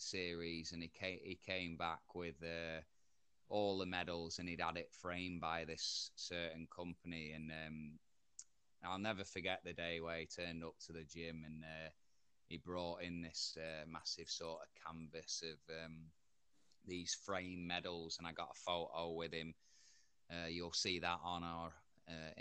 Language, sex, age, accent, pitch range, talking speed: English, male, 20-39, British, 80-95 Hz, 175 wpm